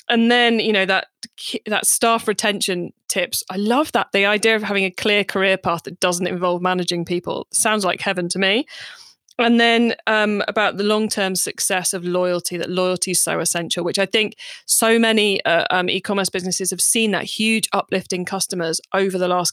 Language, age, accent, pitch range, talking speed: English, 20-39, British, 180-225 Hz, 190 wpm